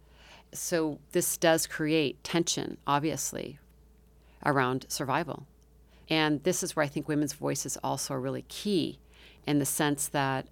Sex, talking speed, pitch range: female, 135 wpm, 135-160 Hz